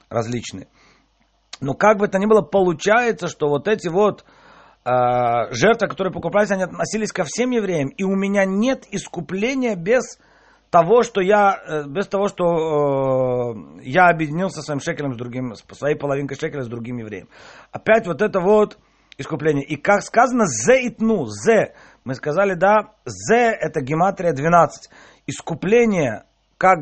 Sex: male